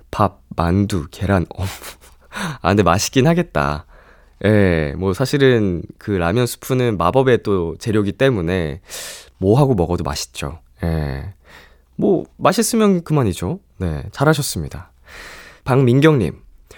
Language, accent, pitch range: Korean, native, 85-140 Hz